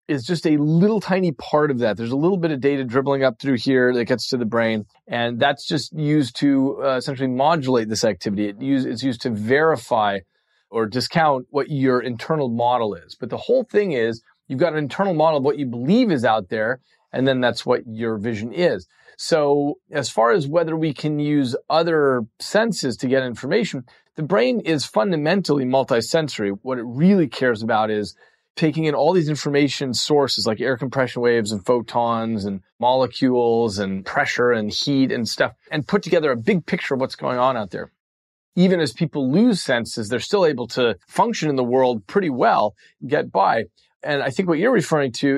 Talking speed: 195 wpm